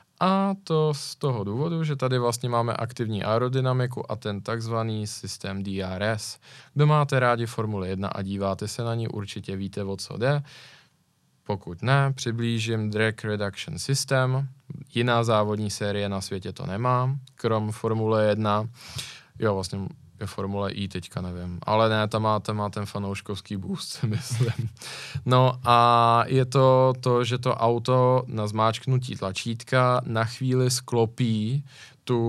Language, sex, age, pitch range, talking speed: Czech, male, 20-39, 105-125 Hz, 145 wpm